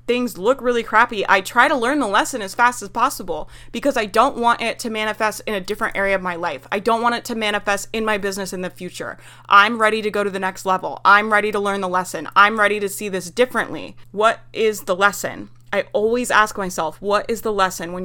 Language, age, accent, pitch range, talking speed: English, 20-39, American, 195-230 Hz, 245 wpm